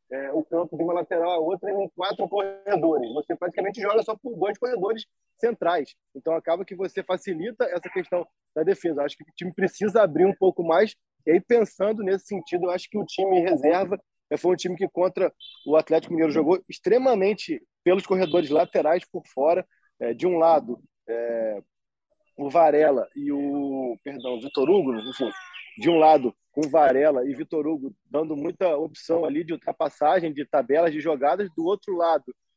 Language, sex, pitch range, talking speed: Portuguese, male, 160-205 Hz, 185 wpm